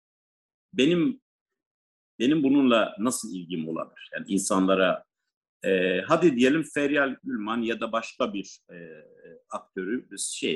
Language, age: Turkish, 50-69